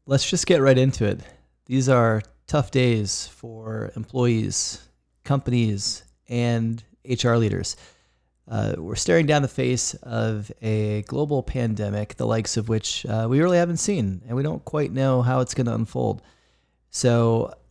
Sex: male